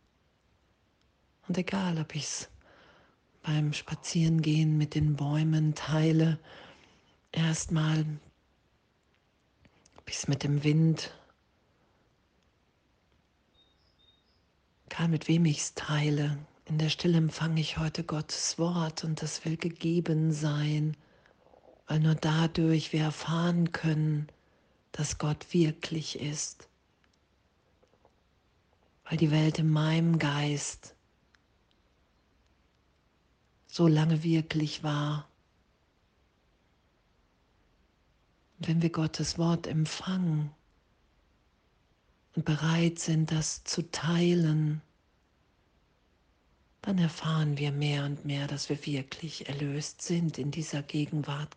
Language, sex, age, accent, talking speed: German, female, 40-59, German, 95 wpm